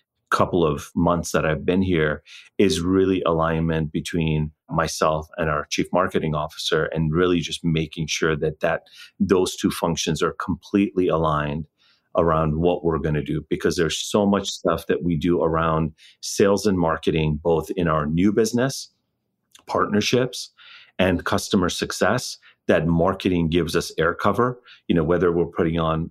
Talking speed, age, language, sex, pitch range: 160 wpm, 40-59, English, male, 80-95 Hz